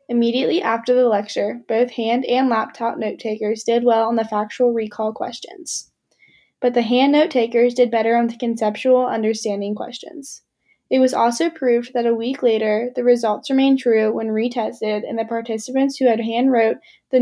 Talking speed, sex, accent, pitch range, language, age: 165 wpm, female, American, 225-255 Hz, English, 10-29